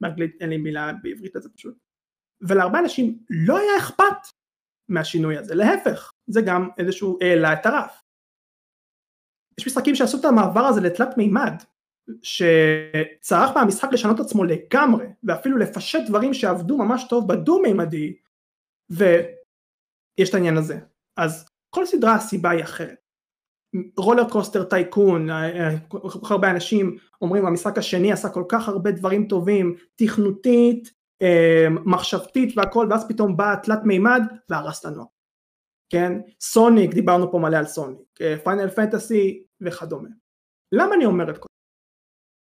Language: Hebrew